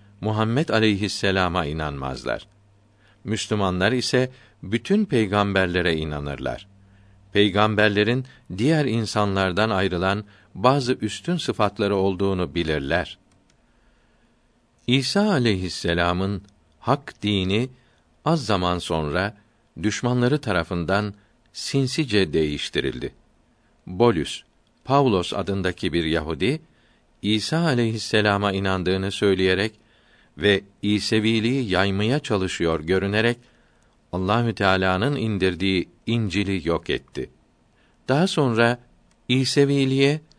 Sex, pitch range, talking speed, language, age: male, 95-125 Hz, 75 wpm, Turkish, 50-69